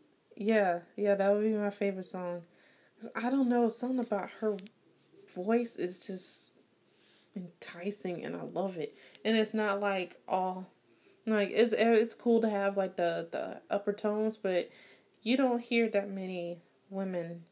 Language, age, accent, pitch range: English, 20-39, American, 185-225 Hz